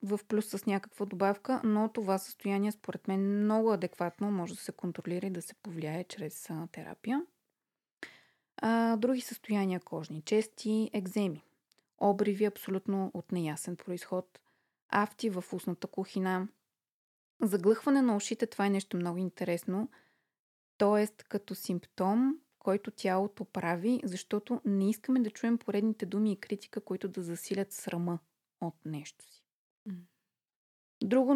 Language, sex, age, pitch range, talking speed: Bulgarian, female, 20-39, 185-225 Hz, 130 wpm